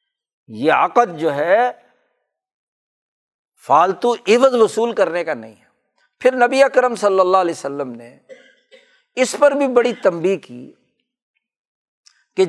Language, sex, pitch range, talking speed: Urdu, male, 160-240 Hz, 125 wpm